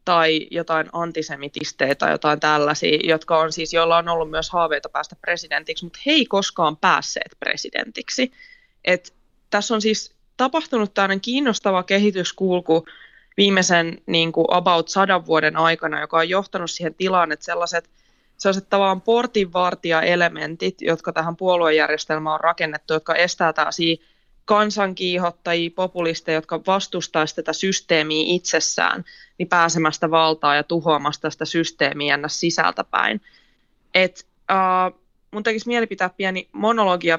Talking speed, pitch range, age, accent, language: 125 wpm, 160-190 Hz, 20-39, native, Finnish